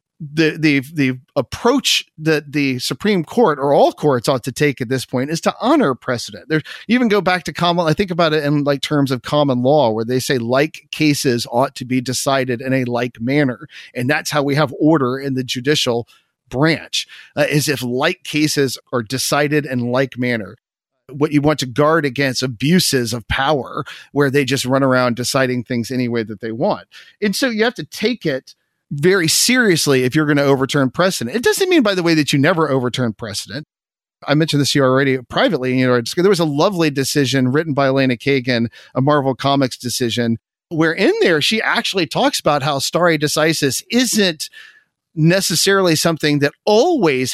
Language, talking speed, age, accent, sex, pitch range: English, 195 wpm, 40-59, American, male, 130-165 Hz